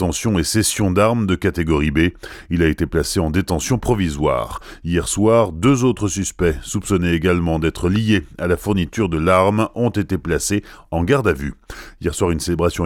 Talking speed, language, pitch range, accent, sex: 175 wpm, French, 85-105 Hz, French, male